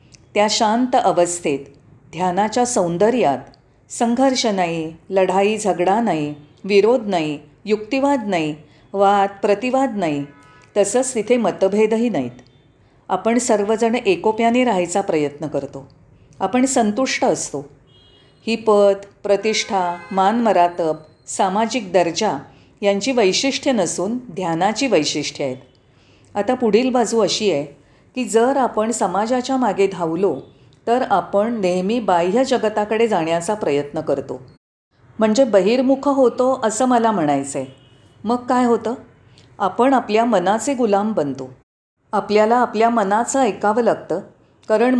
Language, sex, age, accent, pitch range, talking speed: Marathi, female, 40-59, native, 160-235 Hz, 110 wpm